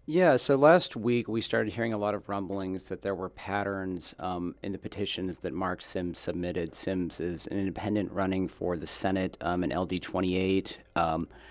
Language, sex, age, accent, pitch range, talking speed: English, male, 40-59, American, 90-105 Hz, 180 wpm